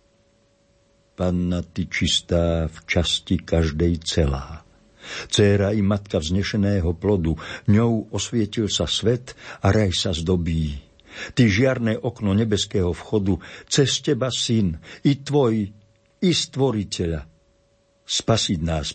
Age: 60-79